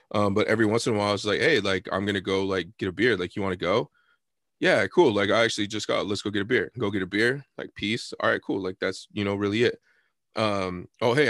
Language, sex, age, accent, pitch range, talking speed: English, male, 20-39, American, 100-115 Hz, 285 wpm